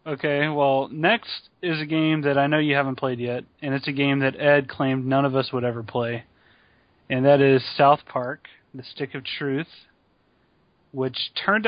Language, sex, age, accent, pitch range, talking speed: English, male, 30-49, American, 130-150 Hz, 190 wpm